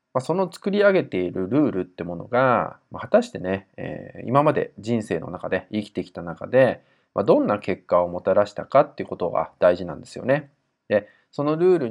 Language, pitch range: Japanese, 95-140 Hz